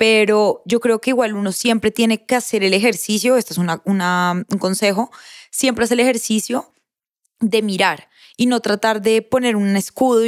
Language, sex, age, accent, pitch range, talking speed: Spanish, female, 20-39, Colombian, 195-235 Hz, 180 wpm